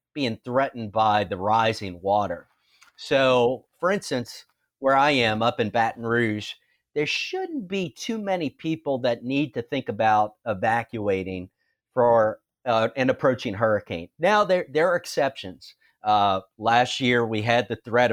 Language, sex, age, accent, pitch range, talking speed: English, male, 40-59, American, 110-135 Hz, 150 wpm